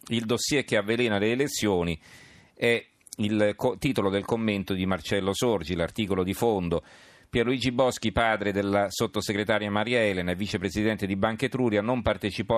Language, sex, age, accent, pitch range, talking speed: Italian, male, 40-59, native, 85-105 Hz, 155 wpm